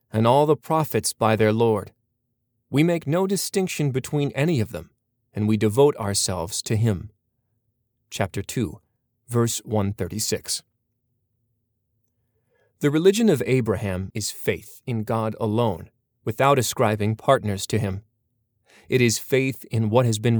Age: 30-49